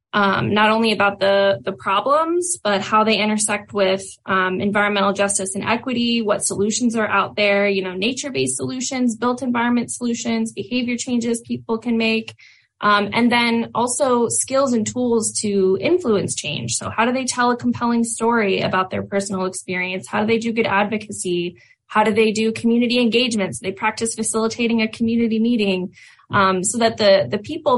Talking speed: 175 wpm